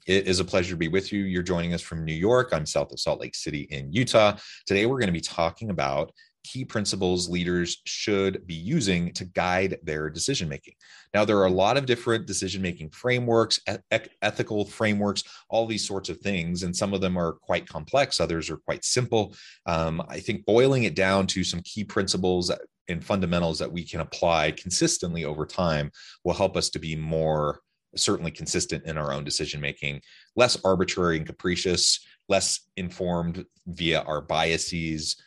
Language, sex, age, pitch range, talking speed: English, male, 30-49, 80-95 Hz, 180 wpm